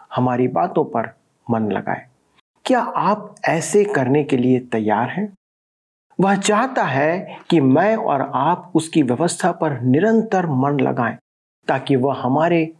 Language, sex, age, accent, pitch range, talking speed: Hindi, male, 50-69, native, 135-205 Hz, 135 wpm